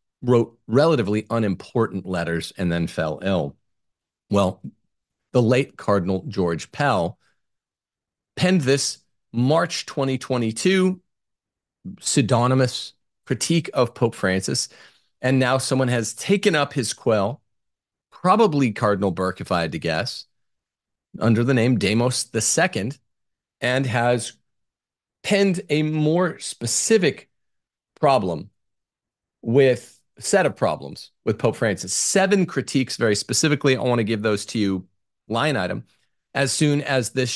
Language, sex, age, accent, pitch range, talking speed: English, male, 40-59, American, 95-135 Hz, 120 wpm